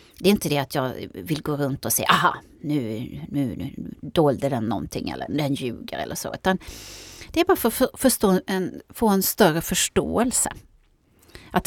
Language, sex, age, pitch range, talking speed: Swedish, female, 30-49, 150-225 Hz, 175 wpm